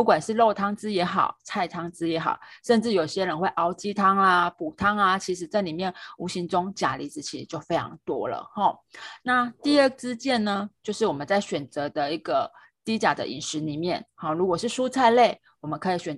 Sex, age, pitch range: female, 30-49, 175-230 Hz